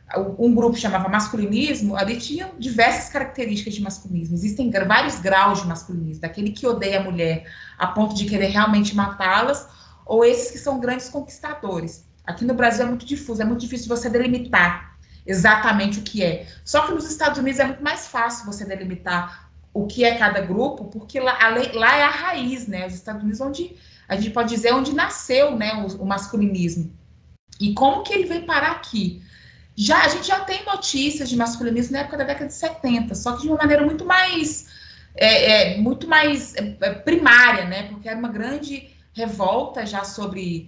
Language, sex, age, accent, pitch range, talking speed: Portuguese, female, 20-39, Brazilian, 195-265 Hz, 175 wpm